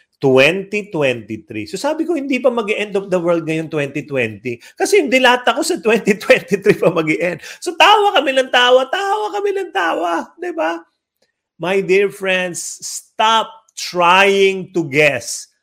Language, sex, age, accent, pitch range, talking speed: English, male, 30-49, Filipino, 140-230 Hz, 150 wpm